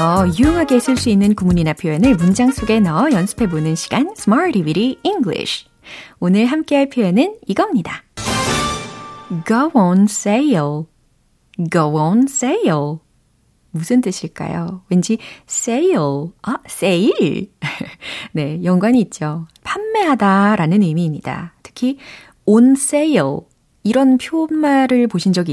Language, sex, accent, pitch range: Korean, female, native, 165-265 Hz